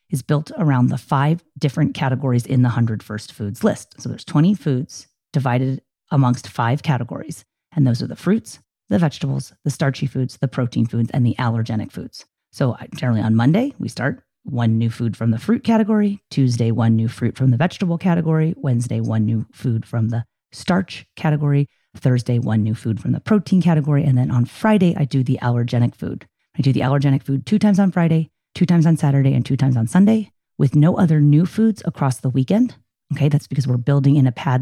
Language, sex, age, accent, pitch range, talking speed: English, female, 30-49, American, 130-175 Hz, 205 wpm